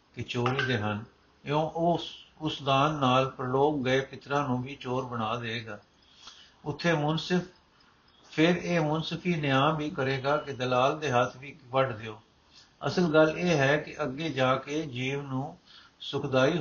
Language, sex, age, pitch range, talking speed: Punjabi, male, 60-79, 130-170 Hz, 155 wpm